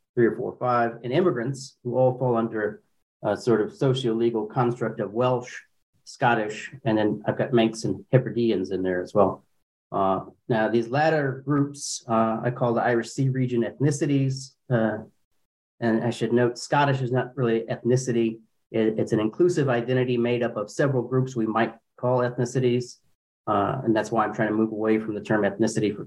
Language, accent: English, American